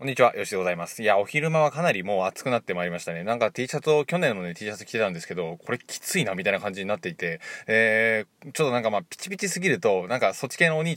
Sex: male